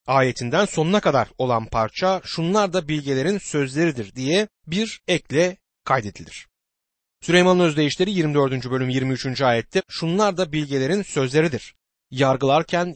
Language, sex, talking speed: Turkish, male, 110 wpm